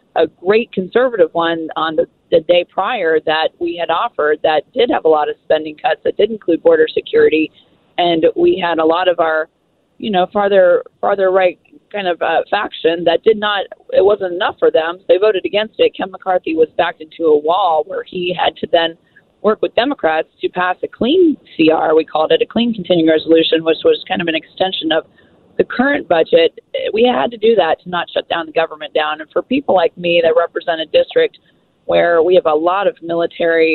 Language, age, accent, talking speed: English, 30-49, American, 210 wpm